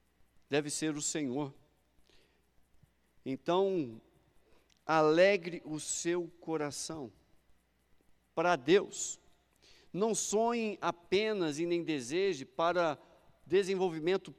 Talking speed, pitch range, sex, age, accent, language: 80 wpm, 180-240 Hz, male, 50-69, Brazilian, Portuguese